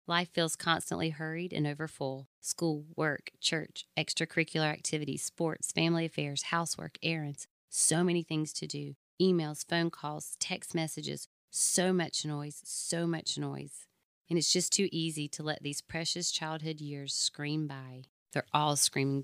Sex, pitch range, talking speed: female, 145-170 Hz, 155 wpm